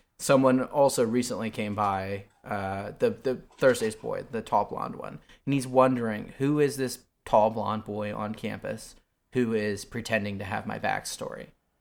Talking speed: 165 wpm